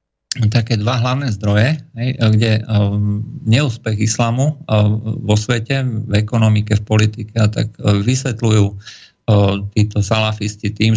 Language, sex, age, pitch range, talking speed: Slovak, male, 50-69, 105-115 Hz, 100 wpm